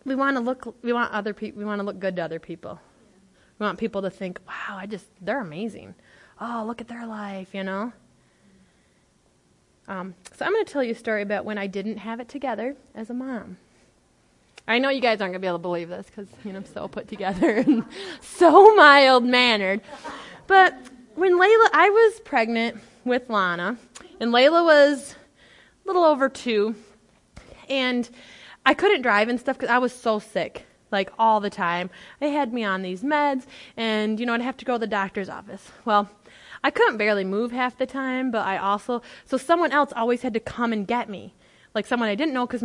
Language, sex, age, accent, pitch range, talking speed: English, female, 20-39, American, 200-255 Hz, 205 wpm